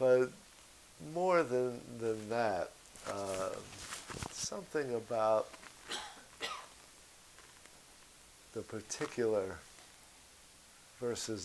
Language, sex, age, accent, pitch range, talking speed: English, male, 50-69, American, 100-125 Hz, 60 wpm